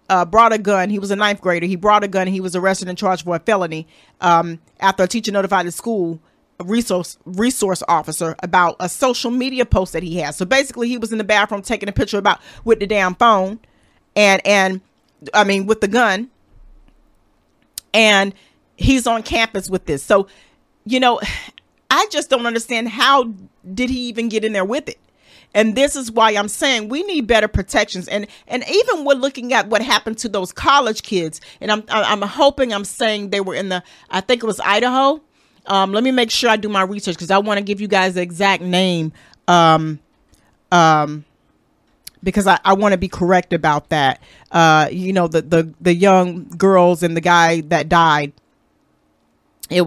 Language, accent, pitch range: English, American, 175-225 Hz